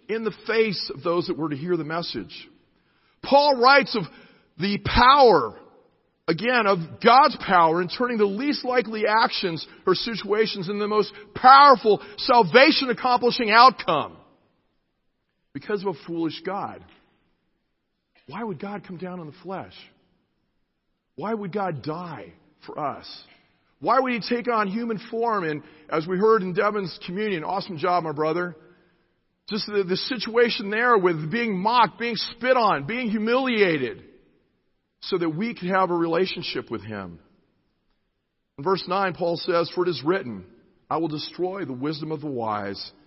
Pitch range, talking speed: 175-230 Hz, 155 wpm